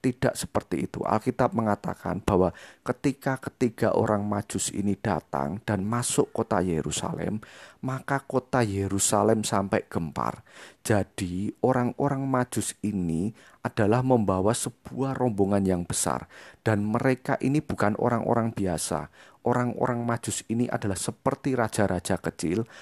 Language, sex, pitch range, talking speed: Indonesian, male, 95-120 Hz, 115 wpm